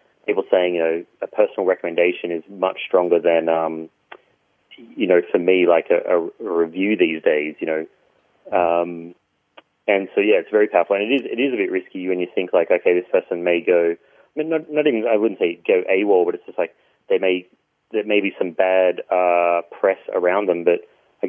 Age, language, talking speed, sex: 30-49, English, 215 wpm, male